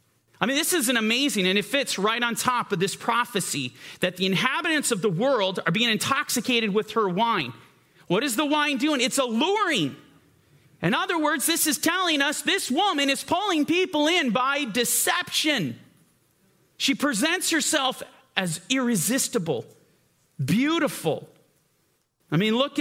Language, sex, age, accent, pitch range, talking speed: English, male, 40-59, American, 180-265 Hz, 155 wpm